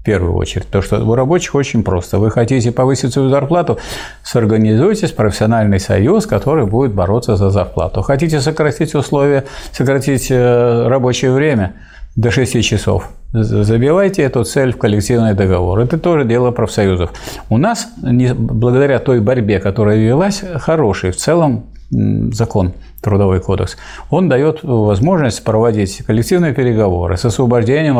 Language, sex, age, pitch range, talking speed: Russian, male, 50-69, 105-140 Hz, 135 wpm